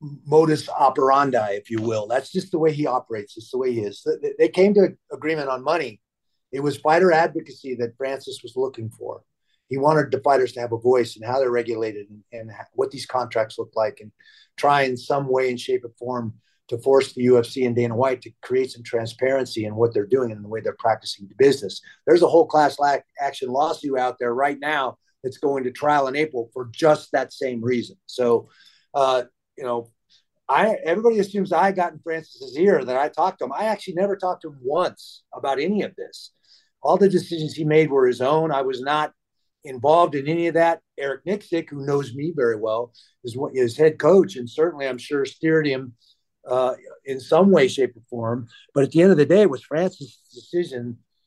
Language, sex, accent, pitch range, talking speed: English, male, American, 125-165 Hz, 215 wpm